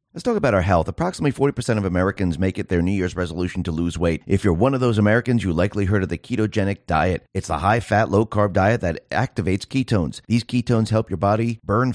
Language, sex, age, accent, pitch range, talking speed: English, male, 30-49, American, 95-120 Hz, 235 wpm